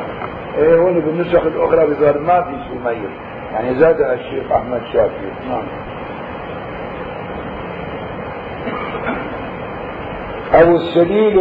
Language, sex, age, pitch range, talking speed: Arabic, male, 50-69, 130-175 Hz, 80 wpm